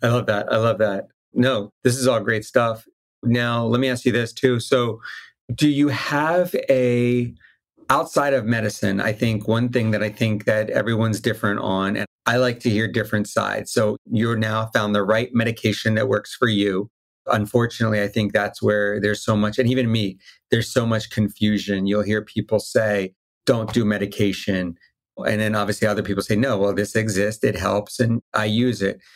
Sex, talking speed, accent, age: male, 195 wpm, American, 40-59